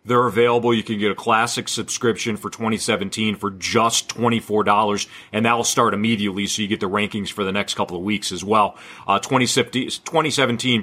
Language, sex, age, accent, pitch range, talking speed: English, male, 40-59, American, 105-120 Hz, 175 wpm